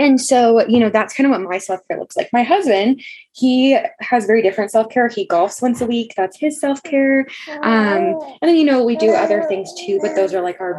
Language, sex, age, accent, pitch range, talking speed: English, female, 10-29, American, 200-285 Hz, 235 wpm